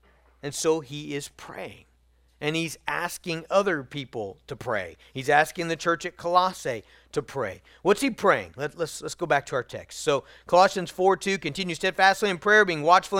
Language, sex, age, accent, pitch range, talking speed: English, male, 40-59, American, 155-235 Hz, 180 wpm